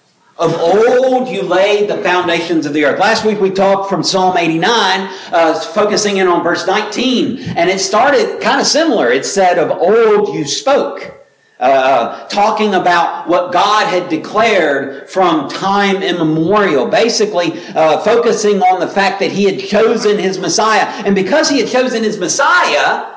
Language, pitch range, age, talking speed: English, 185-250 Hz, 50-69, 165 wpm